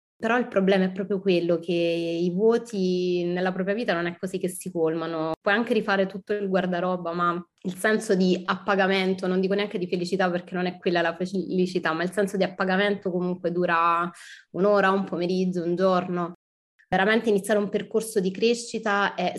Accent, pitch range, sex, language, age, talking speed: native, 175-200 Hz, female, Italian, 20-39, 185 wpm